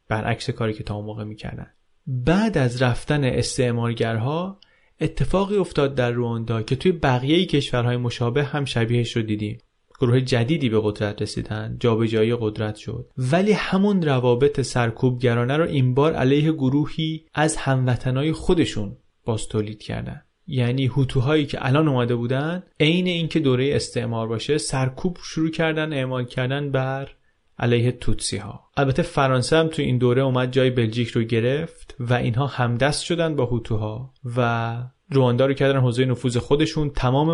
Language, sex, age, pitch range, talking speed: Persian, male, 30-49, 120-145 Hz, 150 wpm